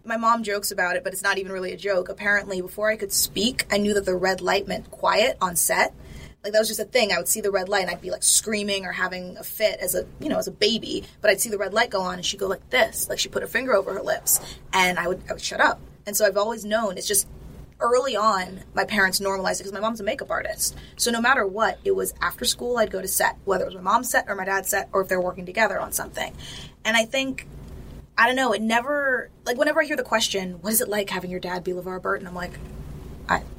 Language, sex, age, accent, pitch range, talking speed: English, female, 20-39, American, 190-220 Hz, 285 wpm